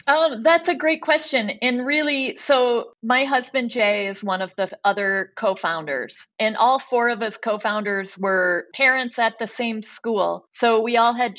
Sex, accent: female, American